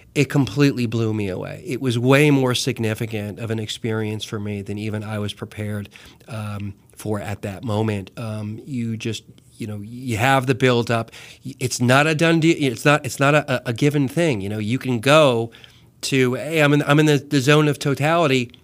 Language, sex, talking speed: English, male, 205 wpm